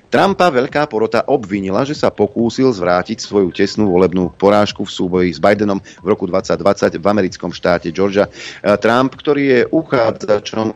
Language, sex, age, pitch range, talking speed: Slovak, male, 40-59, 90-115 Hz, 150 wpm